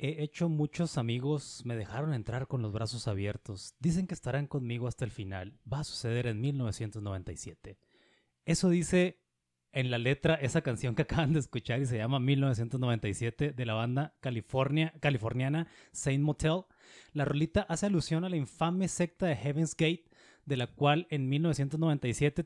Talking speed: 160 wpm